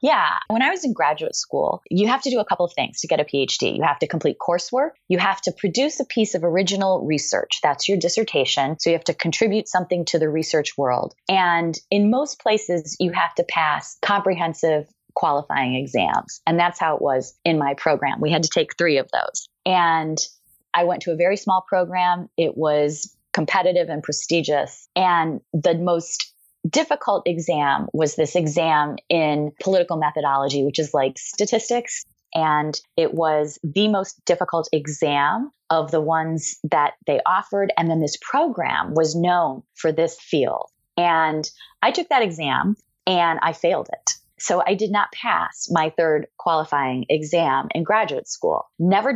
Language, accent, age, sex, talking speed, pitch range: English, American, 20-39, female, 175 wpm, 150-195 Hz